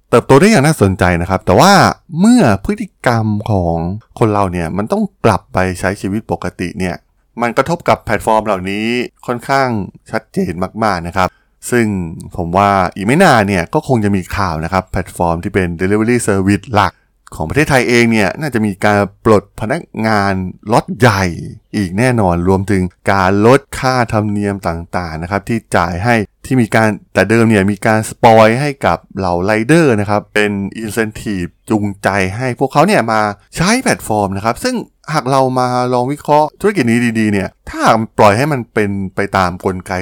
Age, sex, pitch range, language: 20-39, male, 95-120 Hz, Thai